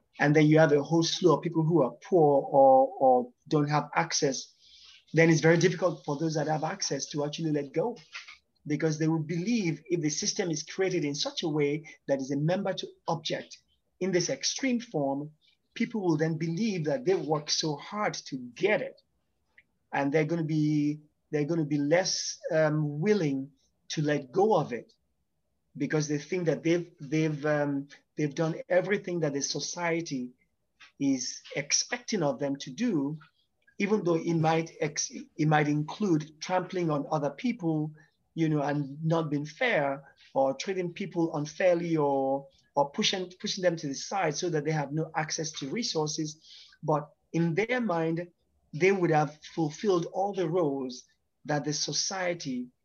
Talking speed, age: 170 wpm, 30-49